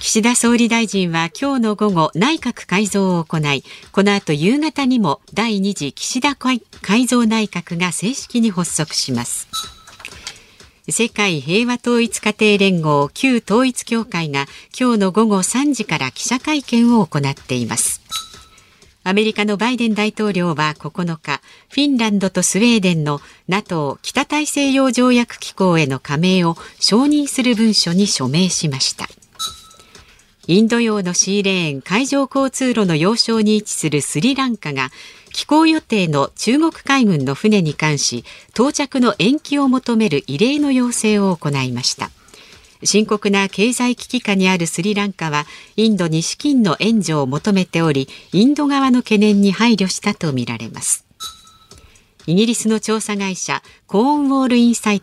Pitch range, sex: 165-240 Hz, female